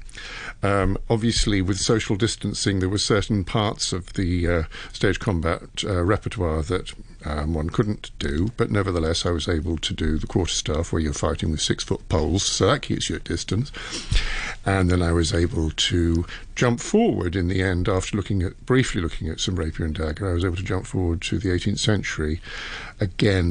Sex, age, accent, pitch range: male, 50-69, British, 90-115 Hz